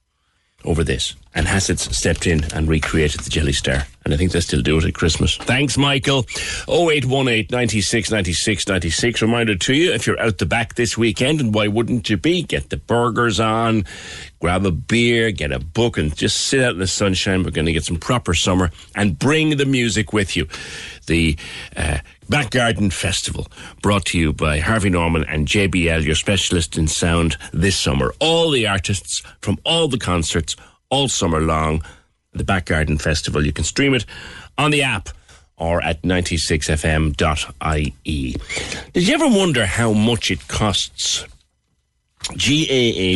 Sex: male